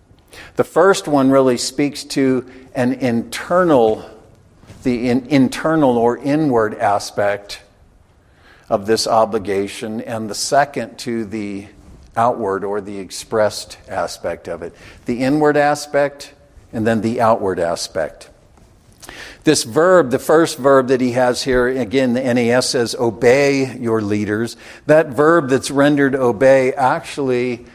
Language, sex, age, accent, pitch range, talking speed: English, male, 50-69, American, 110-140 Hz, 125 wpm